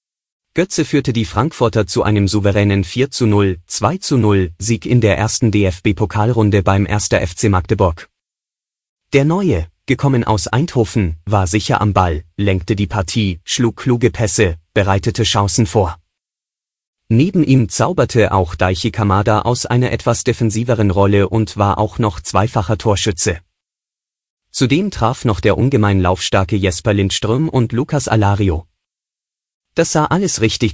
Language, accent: German, German